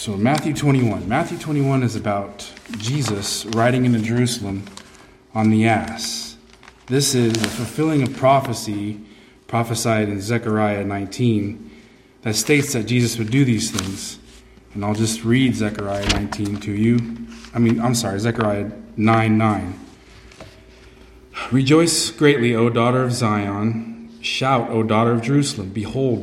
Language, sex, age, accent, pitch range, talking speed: English, male, 20-39, American, 110-130 Hz, 135 wpm